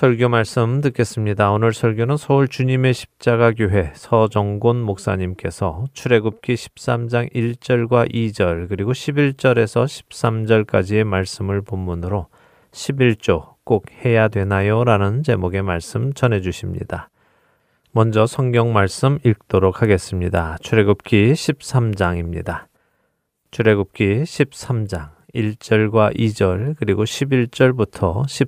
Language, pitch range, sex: Korean, 100-125 Hz, male